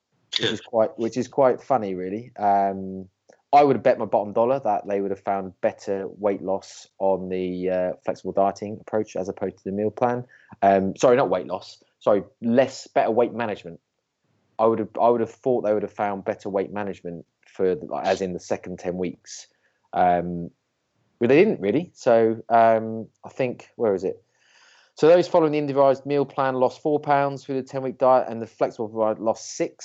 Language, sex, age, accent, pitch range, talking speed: English, male, 20-39, British, 100-120 Hz, 205 wpm